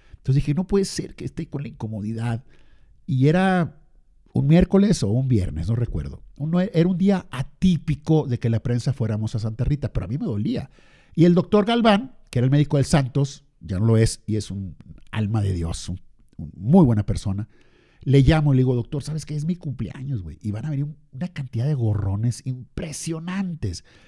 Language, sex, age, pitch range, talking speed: Spanish, male, 50-69, 110-170 Hz, 205 wpm